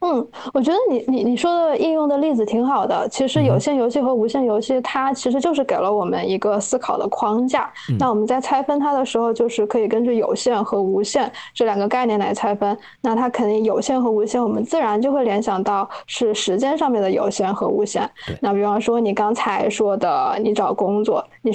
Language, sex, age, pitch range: Chinese, female, 10-29, 215-265 Hz